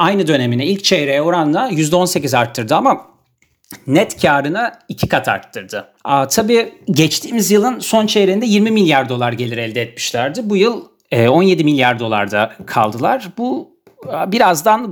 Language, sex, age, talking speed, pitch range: Turkish, male, 40-59, 130 wpm, 130-195 Hz